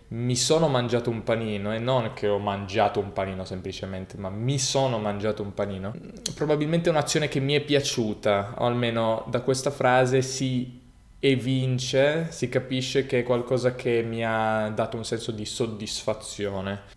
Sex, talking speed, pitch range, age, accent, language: male, 165 wpm, 105-130 Hz, 20-39, native, Italian